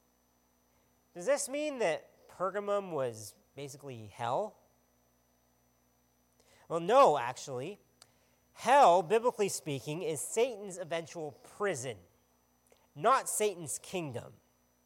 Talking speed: 85 wpm